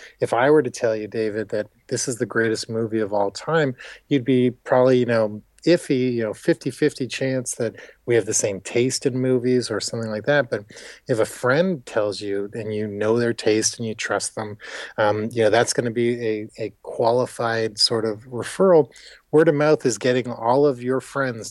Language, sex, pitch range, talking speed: English, male, 110-130 Hz, 205 wpm